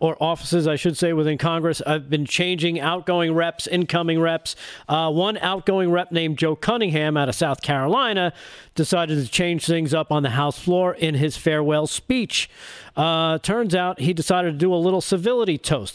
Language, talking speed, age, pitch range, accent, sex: English, 185 wpm, 40-59, 150-180 Hz, American, male